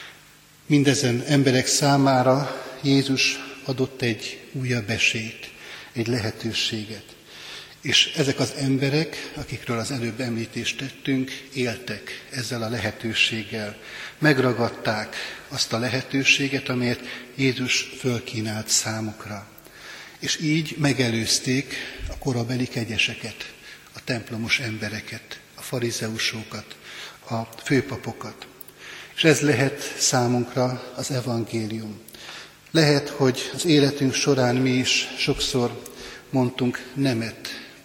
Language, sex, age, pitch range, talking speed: Hungarian, male, 60-79, 115-140 Hz, 95 wpm